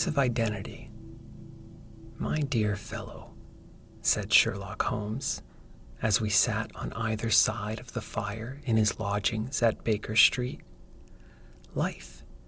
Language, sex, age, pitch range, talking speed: English, male, 40-59, 105-125 Hz, 115 wpm